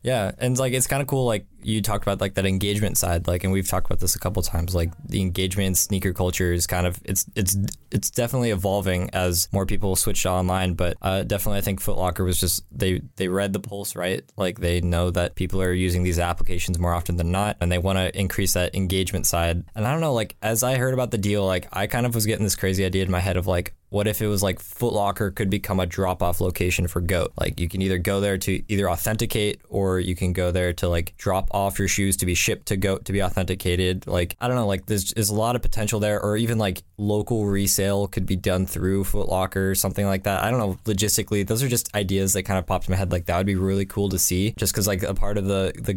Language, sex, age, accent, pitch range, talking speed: English, male, 20-39, American, 90-105 Hz, 270 wpm